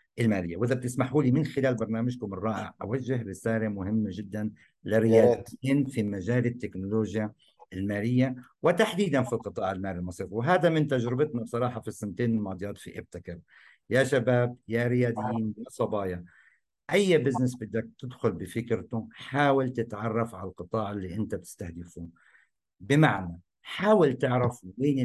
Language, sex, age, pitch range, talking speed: Arabic, male, 50-69, 105-135 Hz, 125 wpm